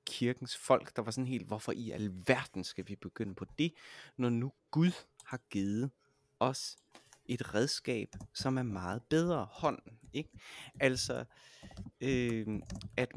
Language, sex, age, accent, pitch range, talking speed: Danish, male, 30-49, native, 110-140 Hz, 135 wpm